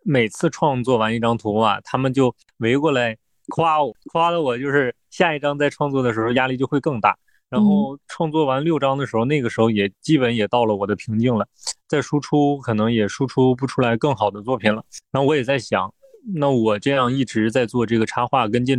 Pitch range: 110-135 Hz